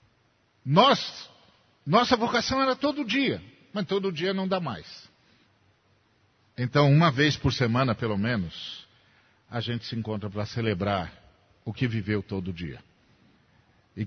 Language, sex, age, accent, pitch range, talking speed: Portuguese, male, 50-69, Brazilian, 105-135 Hz, 130 wpm